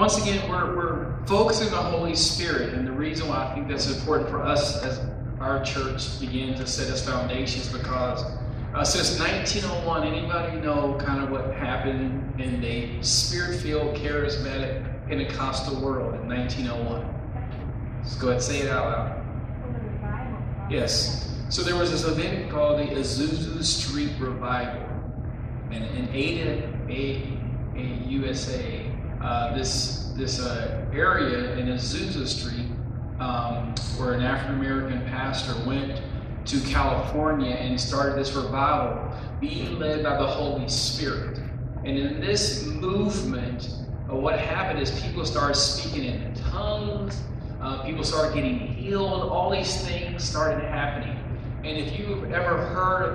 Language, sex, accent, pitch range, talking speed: English, male, American, 120-140 Hz, 140 wpm